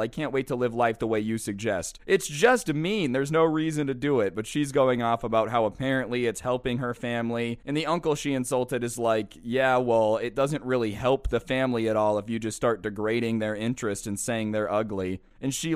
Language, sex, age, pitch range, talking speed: English, male, 20-39, 115-145 Hz, 230 wpm